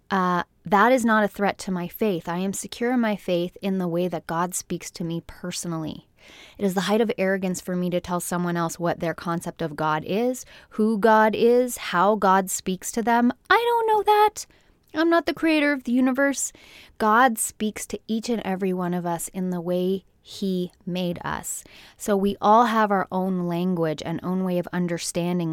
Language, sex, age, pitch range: English, female, 20-39, 170-220 Hz